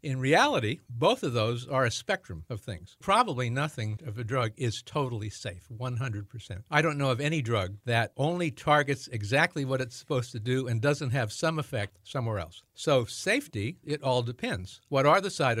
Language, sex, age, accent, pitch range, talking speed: English, male, 60-79, American, 115-145 Hz, 190 wpm